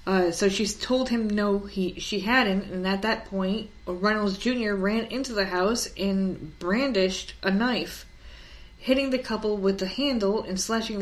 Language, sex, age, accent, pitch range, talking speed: English, female, 20-39, American, 180-225 Hz, 170 wpm